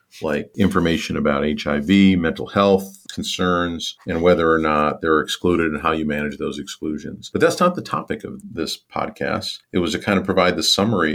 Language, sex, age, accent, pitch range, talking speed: English, male, 40-59, American, 80-95 Hz, 190 wpm